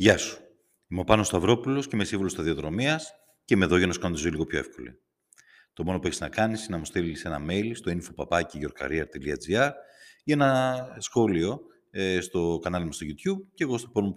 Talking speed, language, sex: 180 wpm, Greek, male